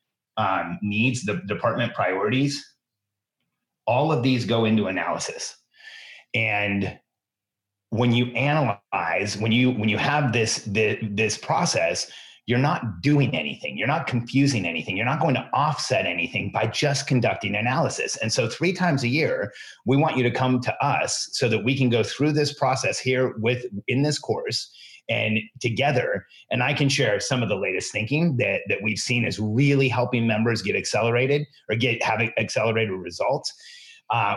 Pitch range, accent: 110-140 Hz, American